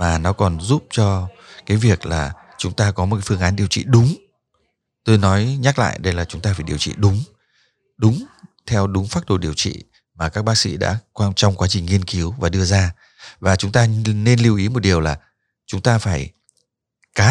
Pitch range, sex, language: 90-115 Hz, male, Vietnamese